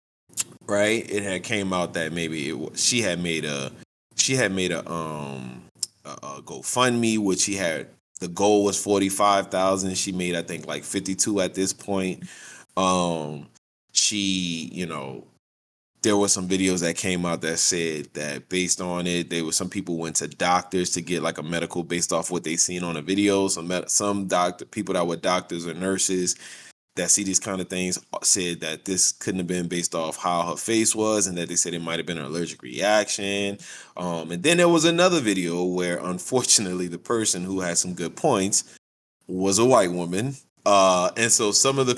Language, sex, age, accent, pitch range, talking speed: English, male, 20-39, American, 85-105 Hz, 200 wpm